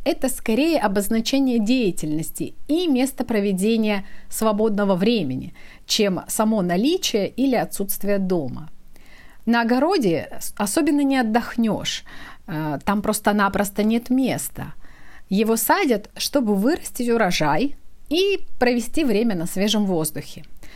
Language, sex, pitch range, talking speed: Russian, female, 195-255 Hz, 100 wpm